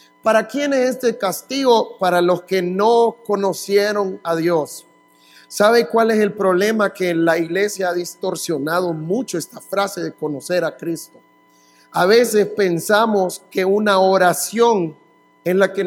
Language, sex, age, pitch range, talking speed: English, male, 50-69, 180-225 Hz, 145 wpm